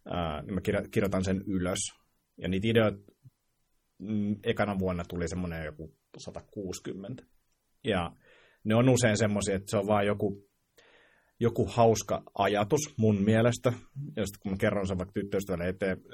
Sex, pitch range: male, 90-105 Hz